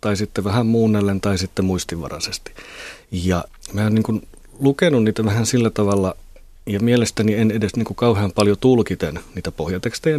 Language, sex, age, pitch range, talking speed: Finnish, male, 30-49, 90-110 Hz, 155 wpm